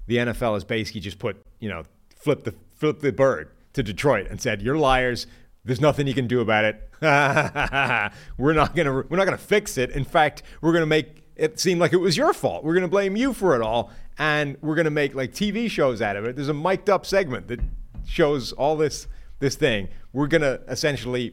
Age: 30-49